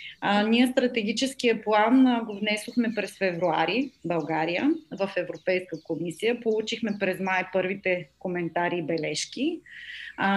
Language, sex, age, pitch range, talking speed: Bulgarian, female, 30-49, 190-245 Hz, 125 wpm